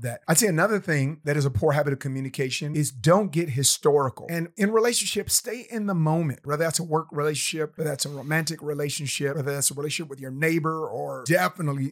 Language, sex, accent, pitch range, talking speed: English, male, American, 145-180 Hz, 210 wpm